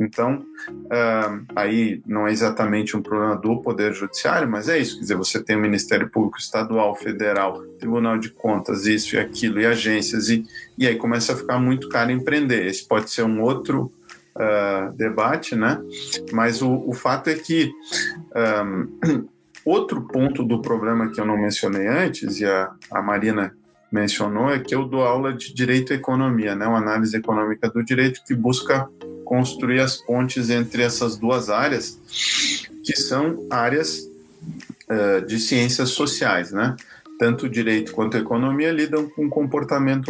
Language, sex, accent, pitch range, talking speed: Portuguese, male, Brazilian, 110-140 Hz, 160 wpm